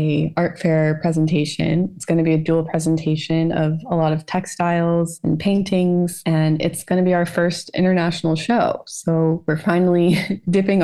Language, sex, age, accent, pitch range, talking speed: English, female, 20-39, American, 150-170 Hz, 170 wpm